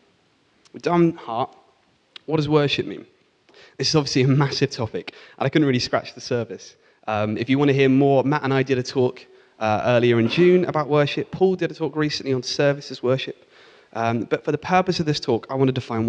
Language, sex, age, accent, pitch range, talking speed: English, male, 30-49, British, 120-150 Hz, 220 wpm